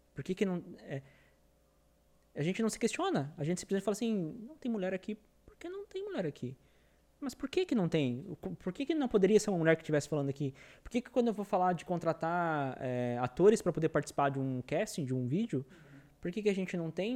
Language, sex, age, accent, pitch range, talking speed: Portuguese, male, 20-39, Brazilian, 145-205 Hz, 245 wpm